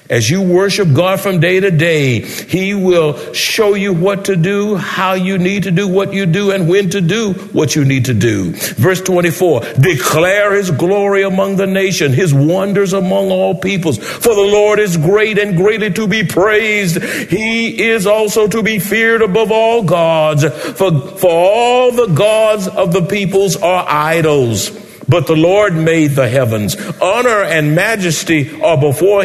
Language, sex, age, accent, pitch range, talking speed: English, male, 60-79, American, 140-200 Hz, 175 wpm